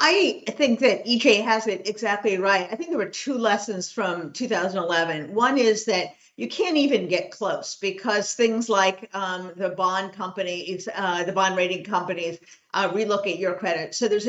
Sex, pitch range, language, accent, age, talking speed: female, 185-225 Hz, English, American, 50-69, 180 wpm